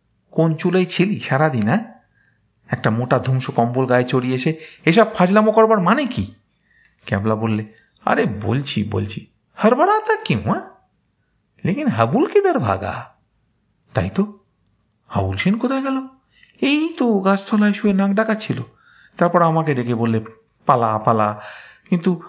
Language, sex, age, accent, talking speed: Bengali, male, 50-69, native, 125 wpm